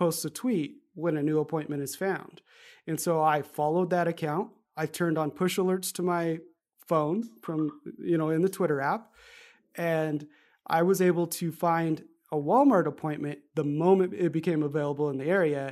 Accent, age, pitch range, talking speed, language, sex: American, 30-49, 150-180 Hz, 180 wpm, English, male